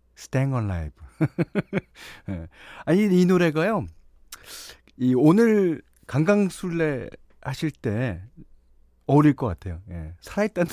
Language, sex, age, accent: Korean, male, 40-59, native